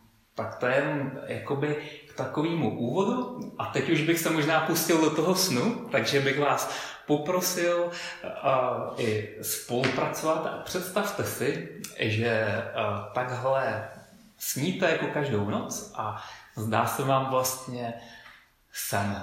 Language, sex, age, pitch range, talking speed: Czech, male, 30-49, 115-155 Hz, 125 wpm